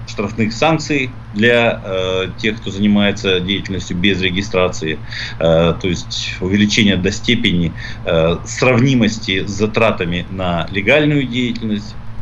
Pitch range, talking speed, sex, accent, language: 105-120 Hz, 115 wpm, male, native, Russian